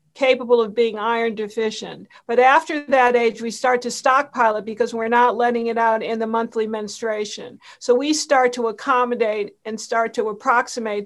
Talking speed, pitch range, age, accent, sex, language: 180 wpm, 220-250 Hz, 50-69, American, female, English